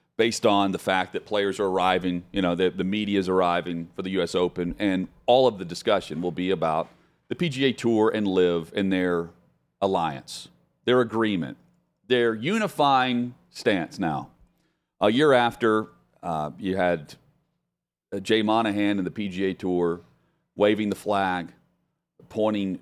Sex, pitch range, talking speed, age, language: male, 90-110 Hz, 155 wpm, 40-59, English